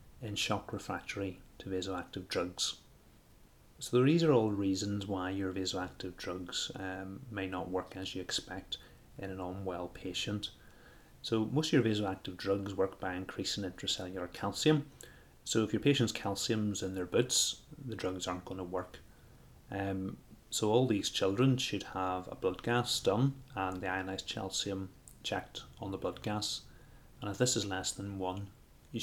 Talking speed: 165 wpm